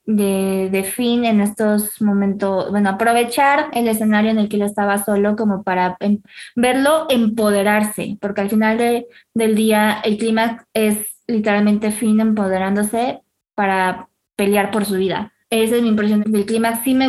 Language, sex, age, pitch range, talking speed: Spanish, female, 20-39, 195-230 Hz, 160 wpm